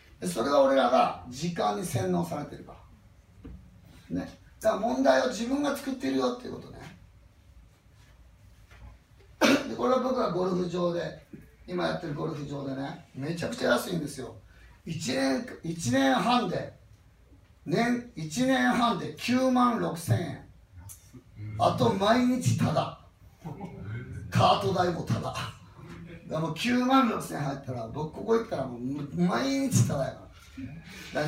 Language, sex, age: Japanese, male, 40-59